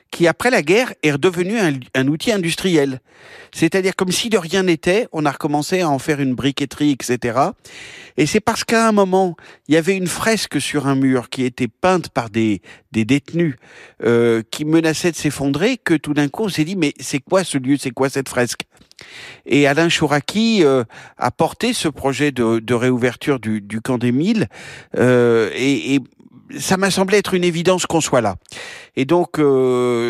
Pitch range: 135-175 Hz